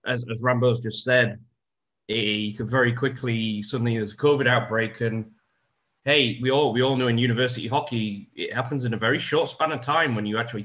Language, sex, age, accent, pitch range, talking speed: English, male, 20-39, British, 110-130 Hz, 195 wpm